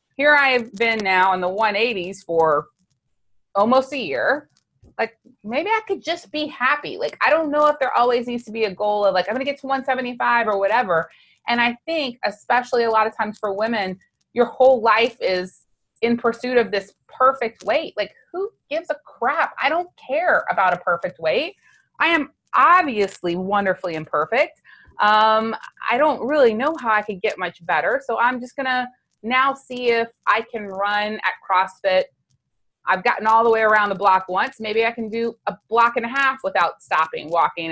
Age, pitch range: 30-49, 195-255 Hz